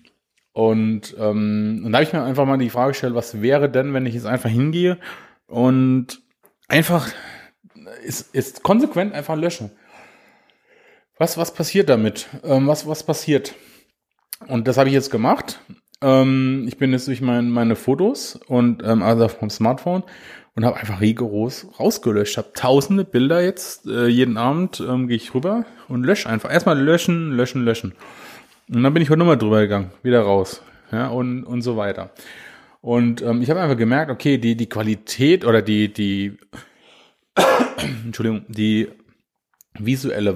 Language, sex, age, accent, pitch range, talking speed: German, male, 30-49, German, 110-135 Hz, 160 wpm